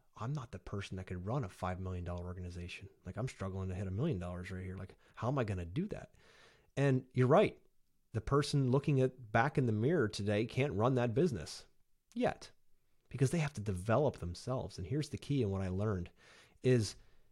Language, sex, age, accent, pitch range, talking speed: English, male, 30-49, American, 95-130 Hz, 210 wpm